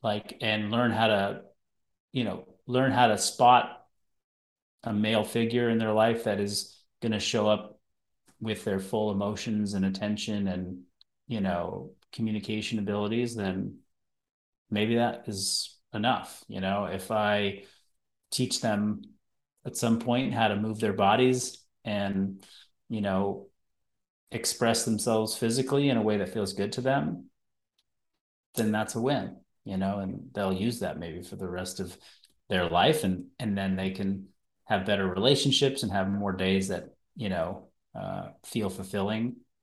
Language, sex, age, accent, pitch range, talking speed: English, male, 30-49, American, 100-115 Hz, 155 wpm